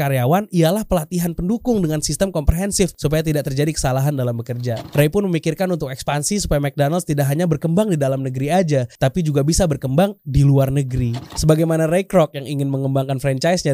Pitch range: 130-170 Hz